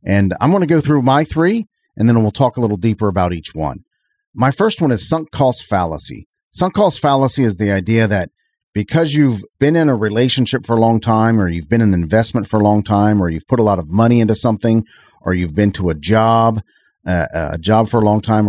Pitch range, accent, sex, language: 95-130 Hz, American, male, English